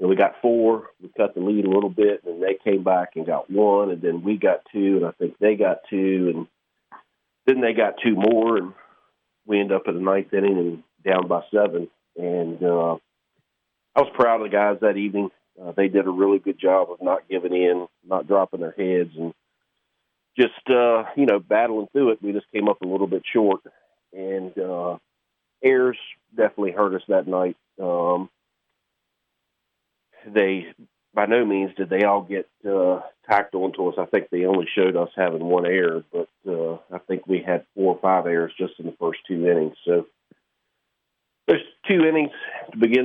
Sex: male